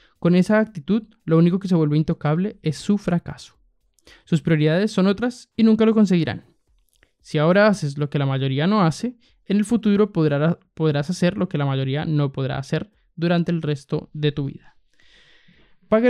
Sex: male